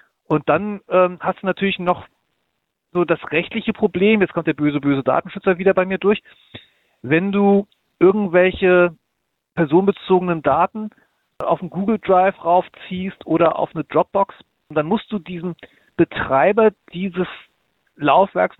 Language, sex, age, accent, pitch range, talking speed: German, male, 40-59, German, 155-185 Hz, 135 wpm